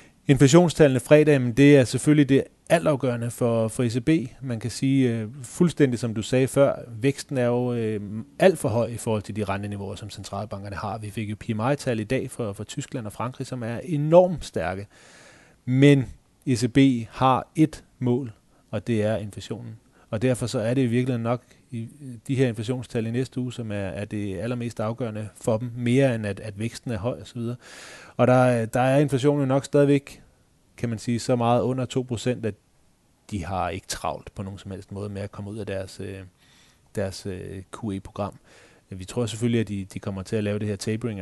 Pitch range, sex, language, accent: 105-130 Hz, male, Danish, native